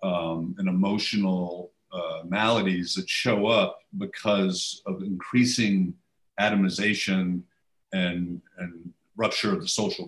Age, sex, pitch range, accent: 50-69, male, 95-125 Hz, American